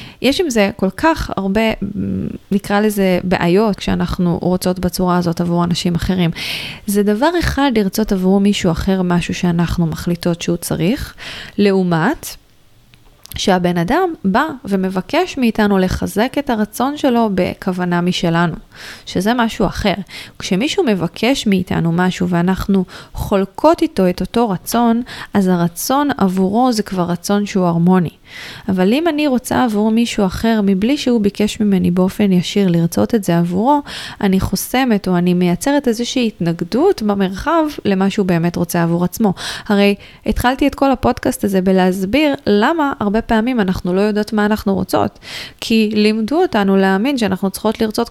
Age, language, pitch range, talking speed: 20-39, Hebrew, 180-225 Hz, 145 wpm